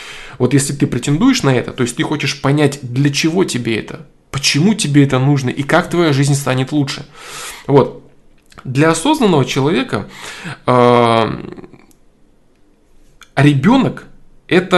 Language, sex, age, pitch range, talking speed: Russian, male, 20-39, 125-160 Hz, 125 wpm